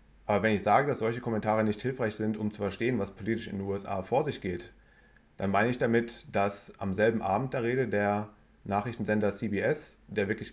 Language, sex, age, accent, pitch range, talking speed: German, male, 30-49, German, 100-120 Hz, 205 wpm